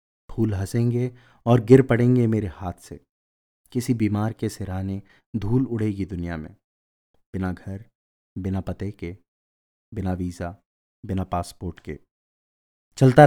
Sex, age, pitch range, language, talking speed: male, 30-49, 85-120 Hz, Hindi, 120 wpm